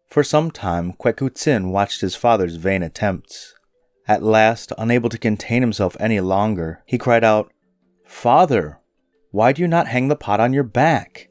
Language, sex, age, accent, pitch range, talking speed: English, male, 30-49, American, 90-130 Hz, 165 wpm